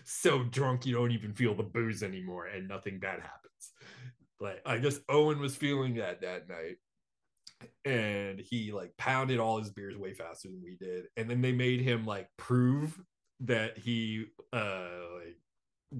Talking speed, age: 170 wpm, 30-49